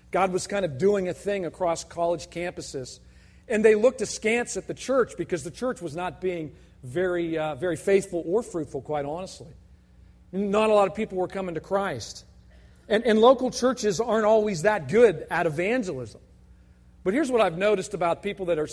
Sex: male